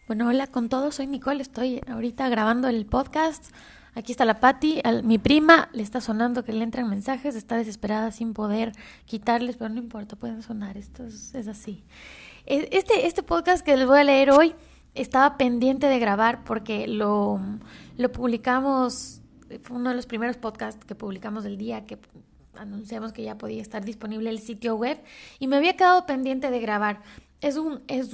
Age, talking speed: 20-39, 185 wpm